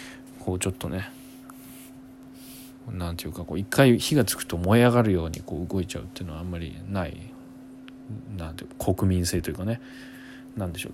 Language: Japanese